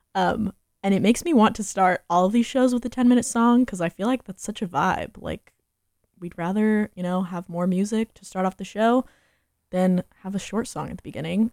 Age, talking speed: 20-39, 240 wpm